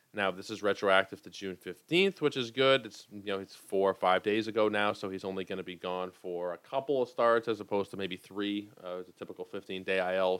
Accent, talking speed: American, 240 wpm